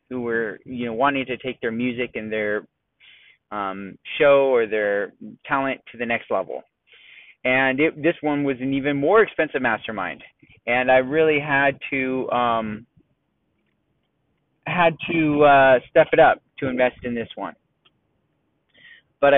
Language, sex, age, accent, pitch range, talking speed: English, male, 30-49, American, 125-150 Hz, 150 wpm